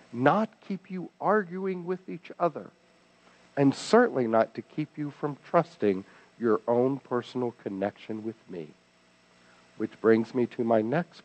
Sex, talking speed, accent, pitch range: male, 145 wpm, American, 110-150 Hz